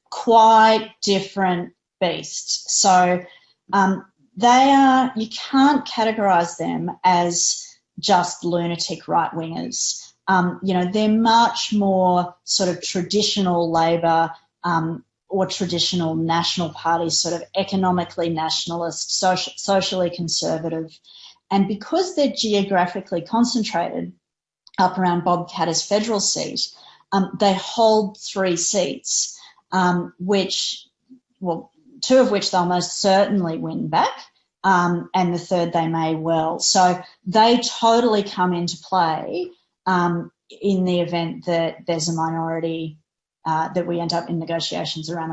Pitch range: 170-210 Hz